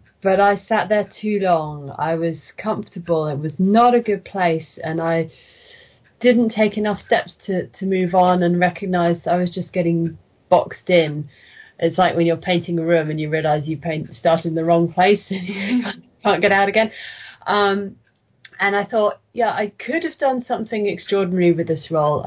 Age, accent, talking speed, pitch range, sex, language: 30-49, British, 190 wpm, 165-205 Hz, female, English